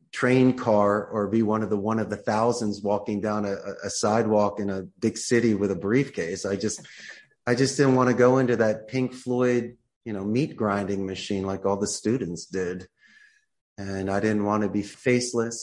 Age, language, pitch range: 30-49, English, 100-115 Hz